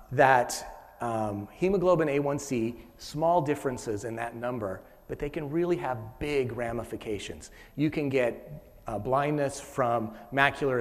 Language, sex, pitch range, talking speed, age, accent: English, male, 110-145 Hz, 130 wpm, 30-49, American